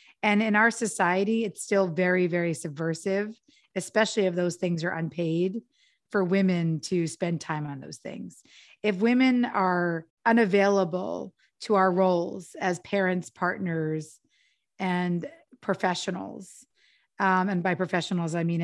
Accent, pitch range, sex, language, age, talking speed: American, 170-200 Hz, female, English, 30-49, 130 wpm